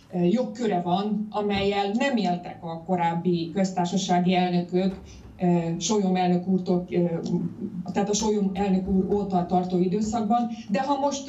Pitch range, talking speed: 180-230 Hz, 120 wpm